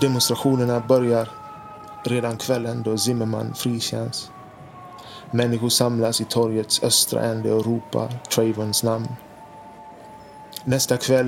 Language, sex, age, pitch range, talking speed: Swedish, male, 20-39, 110-120 Hz, 100 wpm